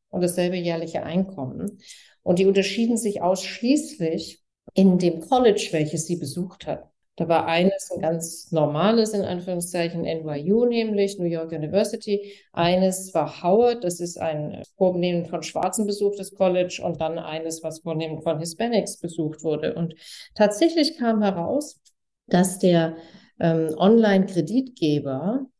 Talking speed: 135 wpm